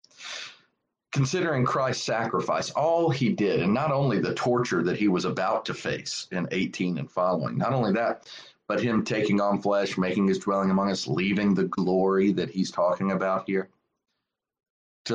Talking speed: 170 wpm